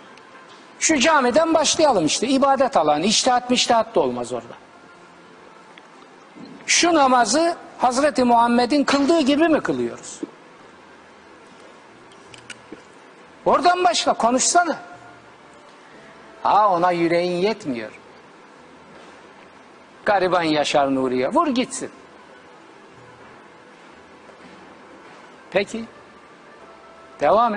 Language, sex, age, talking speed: Turkish, male, 60-79, 75 wpm